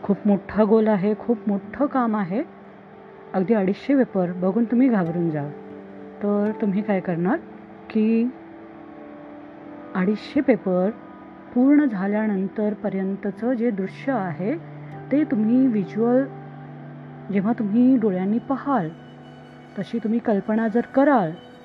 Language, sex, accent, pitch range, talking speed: Marathi, female, native, 185-255 Hz, 110 wpm